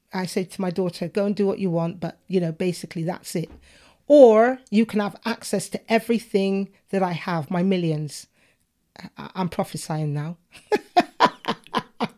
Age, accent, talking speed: 40-59, British, 165 wpm